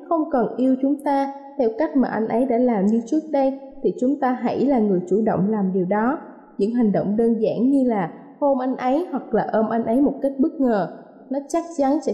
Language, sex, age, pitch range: Thai, female, 20-39, 220-275 Hz